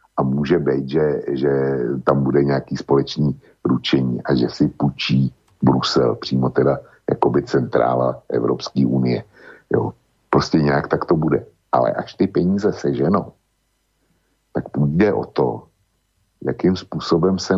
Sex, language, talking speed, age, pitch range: male, Slovak, 130 wpm, 60-79, 65-80 Hz